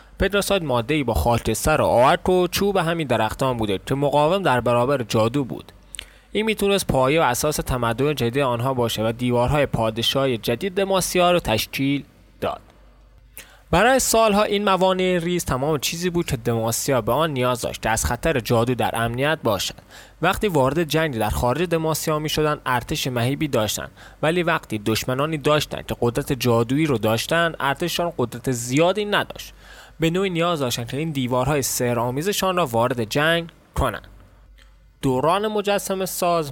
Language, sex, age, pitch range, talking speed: Persian, male, 20-39, 120-165 Hz, 160 wpm